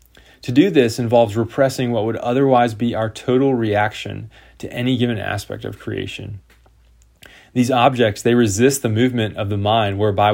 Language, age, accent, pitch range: English, 20-39, American, 100-120 Hz